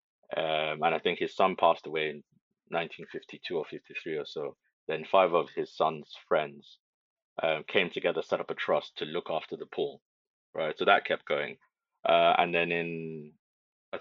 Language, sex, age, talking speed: English, male, 30-49, 180 wpm